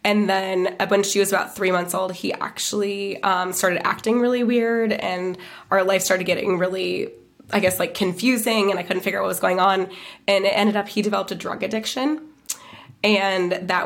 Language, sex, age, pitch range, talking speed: English, female, 20-39, 185-200 Hz, 200 wpm